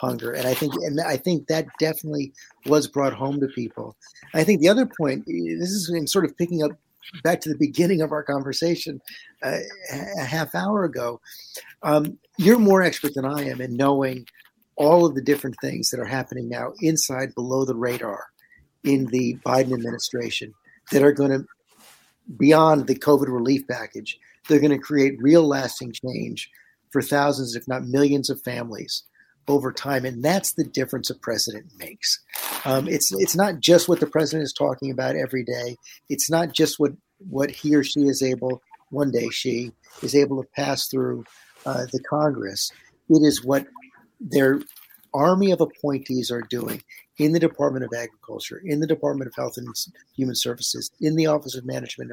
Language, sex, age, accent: English, male, 50-69, American